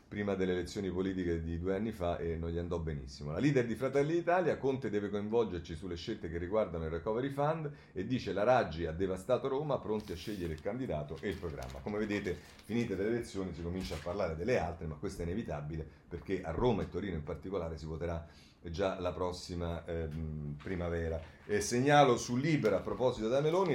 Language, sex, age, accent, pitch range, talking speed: Italian, male, 40-59, native, 85-120 Hz, 200 wpm